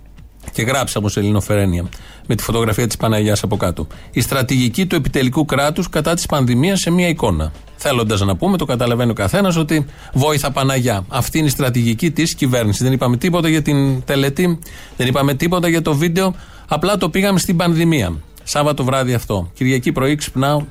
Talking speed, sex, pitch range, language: 180 wpm, male, 110-145 Hz, Greek